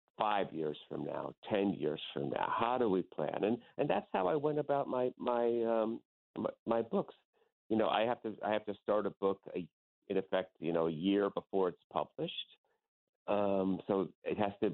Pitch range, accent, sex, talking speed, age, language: 80-105 Hz, American, male, 205 wpm, 50-69, English